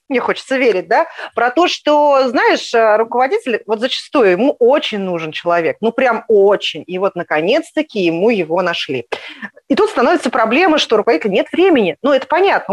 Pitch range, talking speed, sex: 200-275 Hz, 165 wpm, female